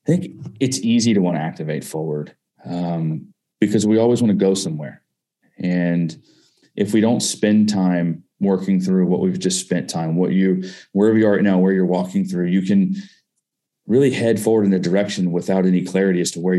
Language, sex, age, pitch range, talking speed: English, male, 30-49, 90-115 Hz, 200 wpm